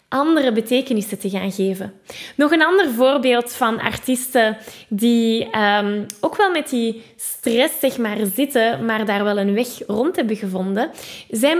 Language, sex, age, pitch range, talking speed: Dutch, female, 10-29, 225-275 Hz, 155 wpm